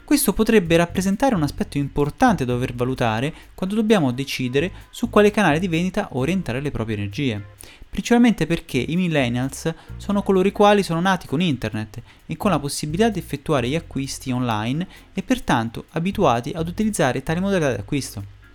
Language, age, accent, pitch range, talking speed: Italian, 30-49, native, 115-180 Hz, 160 wpm